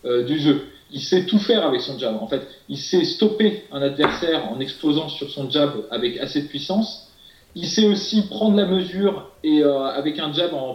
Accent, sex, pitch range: French, male, 145-200 Hz